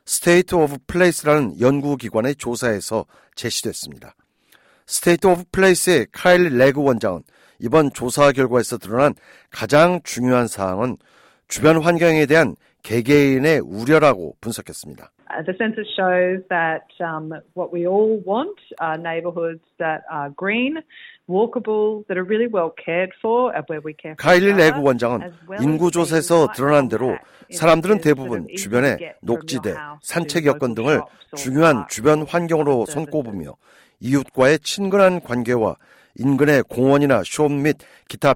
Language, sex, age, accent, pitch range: Korean, male, 50-69, native, 130-175 Hz